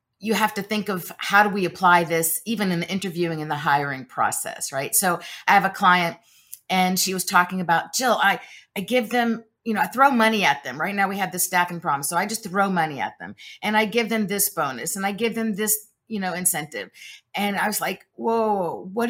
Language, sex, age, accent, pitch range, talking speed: English, female, 50-69, American, 170-215 Hz, 240 wpm